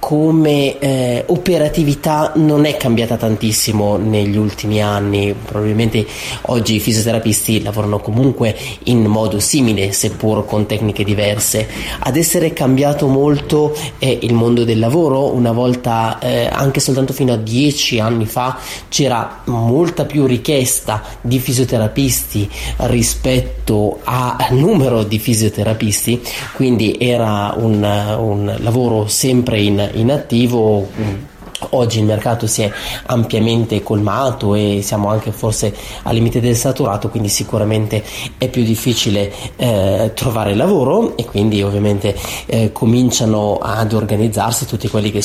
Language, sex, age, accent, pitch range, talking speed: Italian, male, 30-49, native, 105-125 Hz, 125 wpm